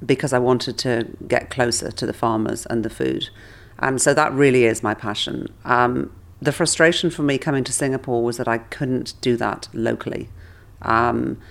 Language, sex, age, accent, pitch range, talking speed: English, female, 40-59, British, 110-130 Hz, 180 wpm